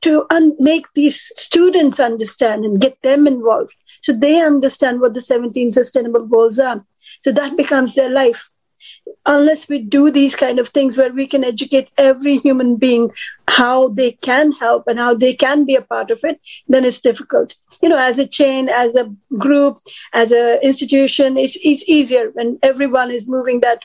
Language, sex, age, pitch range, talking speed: English, female, 50-69, 235-275 Hz, 180 wpm